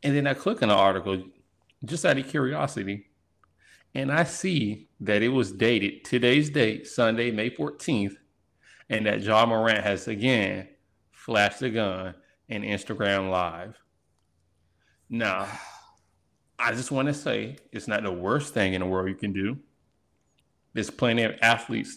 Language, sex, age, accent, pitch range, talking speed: English, male, 30-49, American, 95-115 Hz, 155 wpm